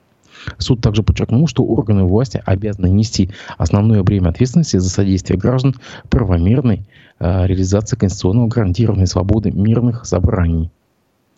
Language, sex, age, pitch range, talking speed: Russian, male, 20-39, 90-110 Hz, 115 wpm